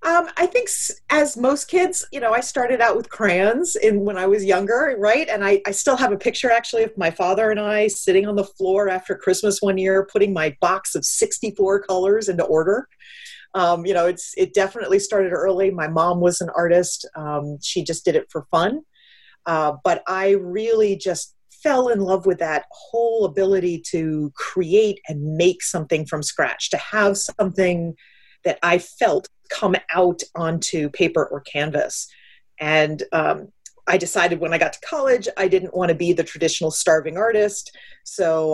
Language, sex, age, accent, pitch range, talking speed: English, female, 40-59, American, 165-215 Hz, 180 wpm